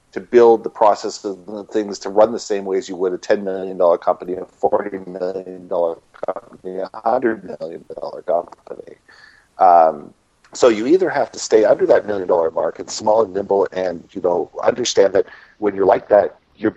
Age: 50-69